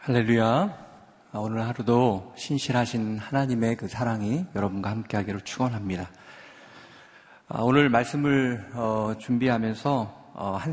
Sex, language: male, Korean